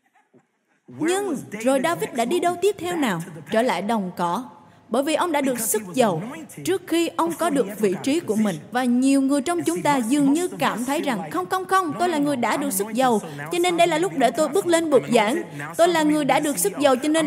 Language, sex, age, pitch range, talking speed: Vietnamese, female, 20-39, 245-330 Hz, 245 wpm